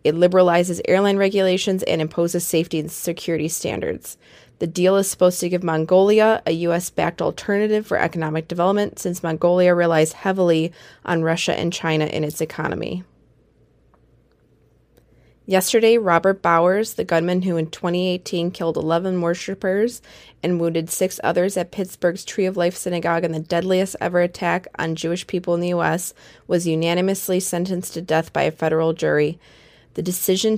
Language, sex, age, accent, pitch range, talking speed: English, female, 20-39, American, 165-190 Hz, 150 wpm